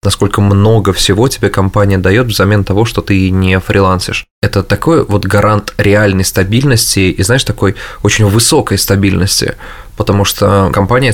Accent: native